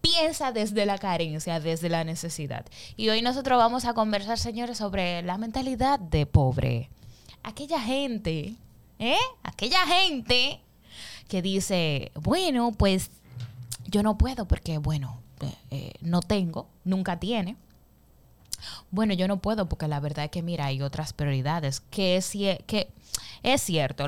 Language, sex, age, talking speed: Spanish, female, 10-29, 140 wpm